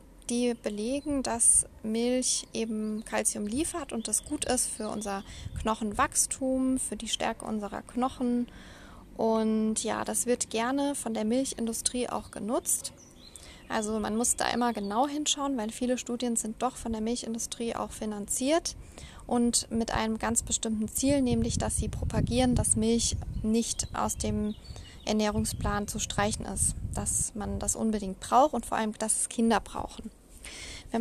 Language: German